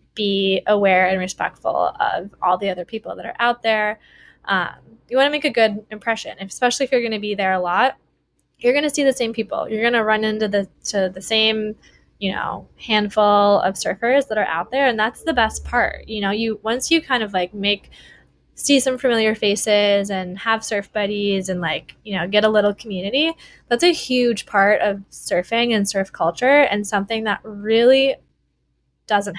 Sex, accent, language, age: female, American, English, 20-39